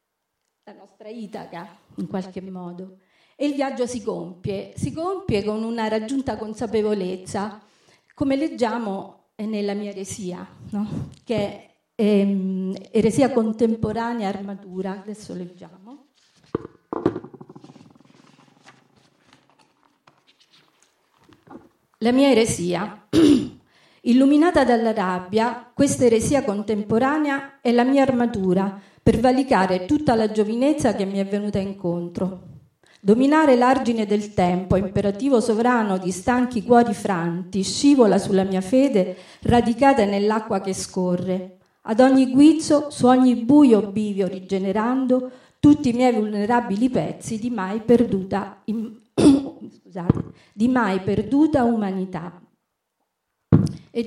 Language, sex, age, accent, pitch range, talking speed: Italian, female, 40-59, native, 195-250 Hz, 100 wpm